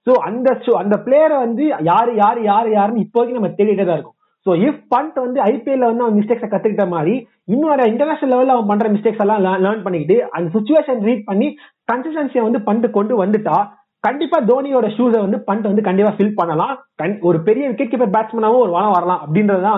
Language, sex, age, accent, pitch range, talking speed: Tamil, male, 30-49, native, 190-245 Hz, 165 wpm